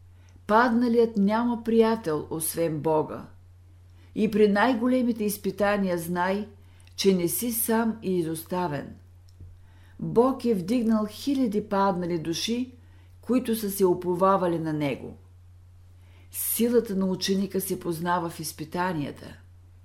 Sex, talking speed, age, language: female, 105 wpm, 50-69, Bulgarian